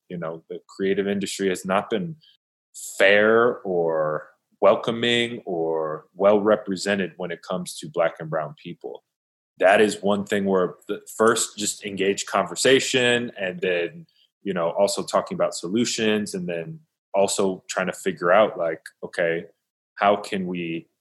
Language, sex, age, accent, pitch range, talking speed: English, male, 20-39, American, 90-110 Hz, 145 wpm